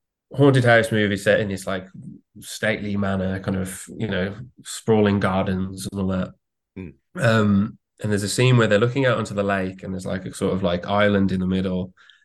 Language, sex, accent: English, male, British